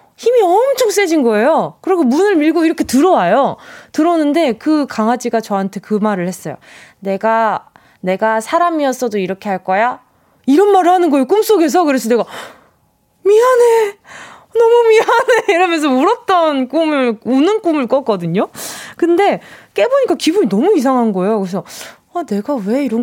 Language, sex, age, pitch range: Korean, female, 20-39, 210-345 Hz